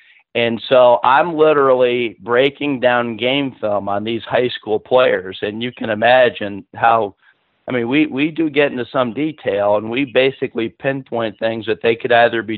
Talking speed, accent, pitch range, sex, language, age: 175 wpm, American, 110-130 Hz, male, English, 50-69